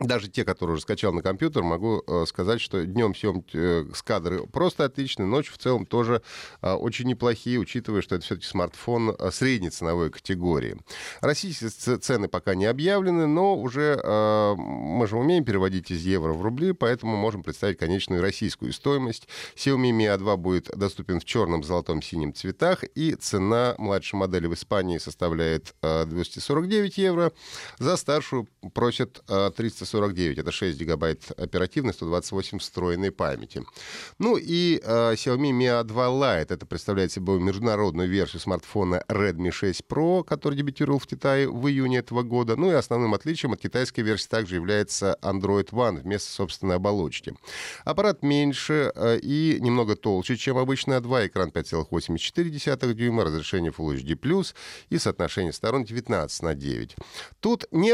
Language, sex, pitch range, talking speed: Russian, male, 95-130 Hz, 145 wpm